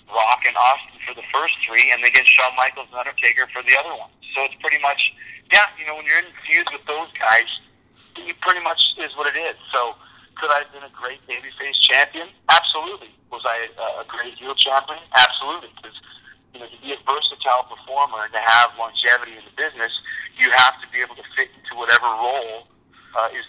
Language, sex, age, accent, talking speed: English, male, 40-59, American, 210 wpm